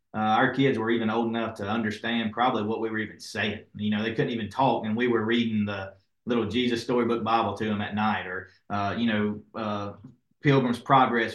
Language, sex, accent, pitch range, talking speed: English, male, American, 105-120 Hz, 215 wpm